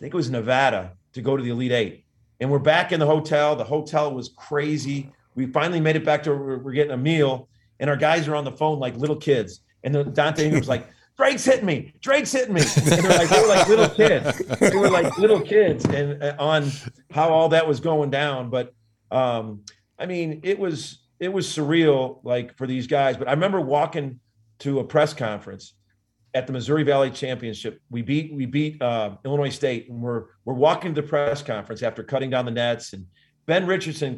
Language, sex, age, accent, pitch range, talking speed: English, male, 40-59, American, 125-160 Hz, 215 wpm